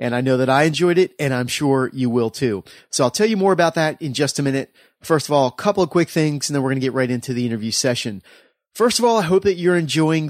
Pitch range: 120-150 Hz